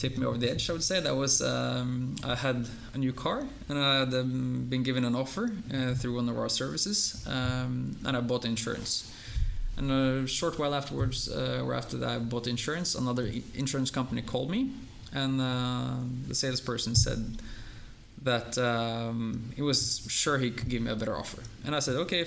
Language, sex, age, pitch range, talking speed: English, male, 20-39, 115-135 Hz, 195 wpm